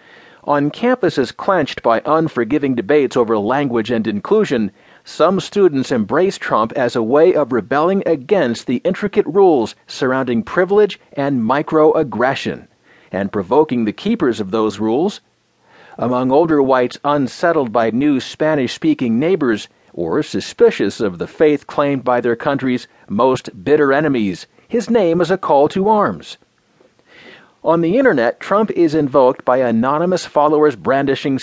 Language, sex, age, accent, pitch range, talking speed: English, male, 40-59, American, 130-180 Hz, 135 wpm